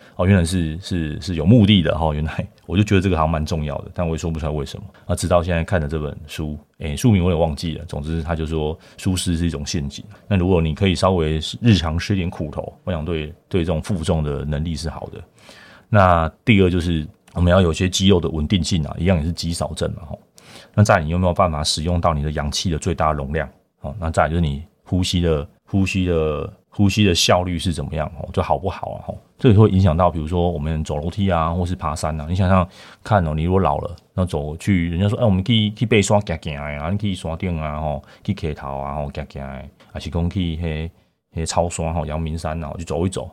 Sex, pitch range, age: male, 80-95 Hz, 30-49